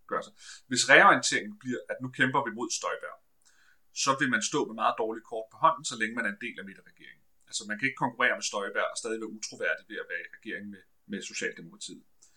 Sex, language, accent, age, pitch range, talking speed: male, Danish, native, 30-49, 110-160 Hz, 225 wpm